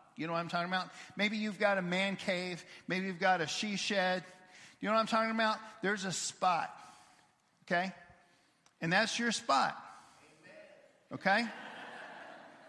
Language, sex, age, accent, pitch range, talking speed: English, male, 50-69, American, 160-215 Hz, 155 wpm